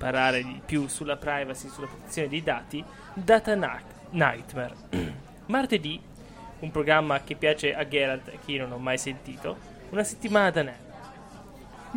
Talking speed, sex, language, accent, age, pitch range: 150 wpm, male, Italian, native, 20-39, 145-205 Hz